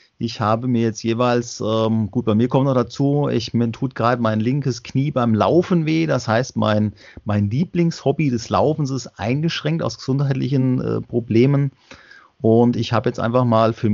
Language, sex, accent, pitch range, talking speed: German, male, German, 115-135 Hz, 180 wpm